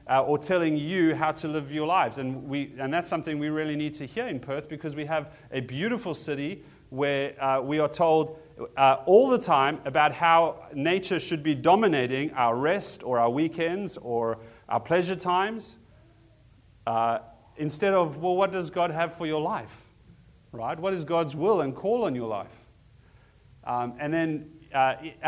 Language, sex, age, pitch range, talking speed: English, male, 30-49, 130-175 Hz, 180 wpm